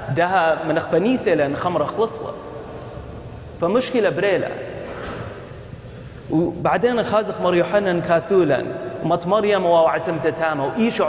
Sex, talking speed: male, 90 wpm